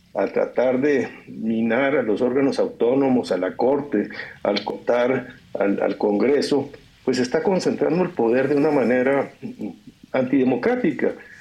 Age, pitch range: 60-79, 125-185 Hz